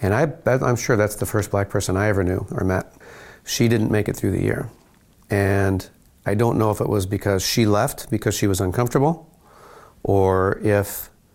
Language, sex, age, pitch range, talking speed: English, male, 40-59, 95-110 Hz, 190 wpm